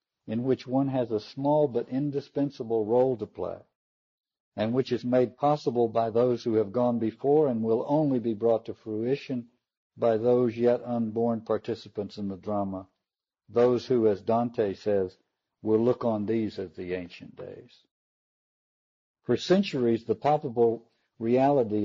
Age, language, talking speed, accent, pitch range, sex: 60-79, English, 150 wpm, American, 105-125 Hz, male